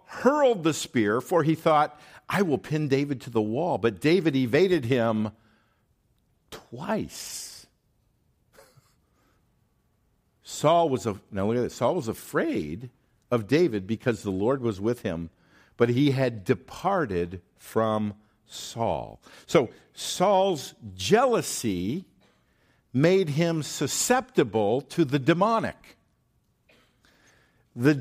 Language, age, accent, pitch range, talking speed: English, 50-69, American, 105-150 Hz, 110 wpm